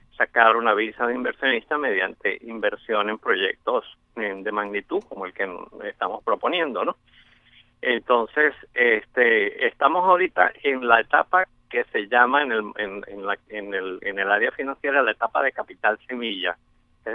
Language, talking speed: English, 155 wpm